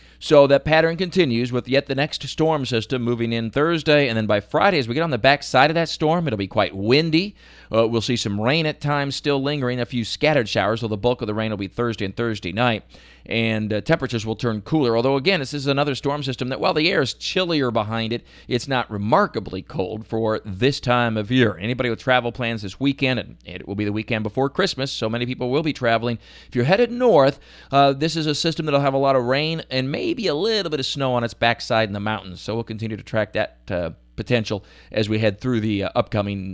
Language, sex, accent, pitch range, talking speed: English, male, American, 110-140 Hz, 245 wpm